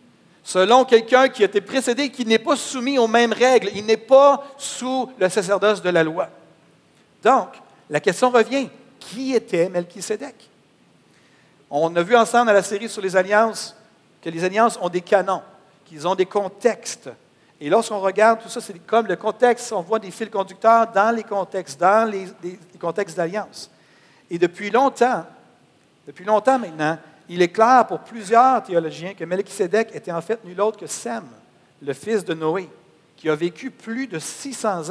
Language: French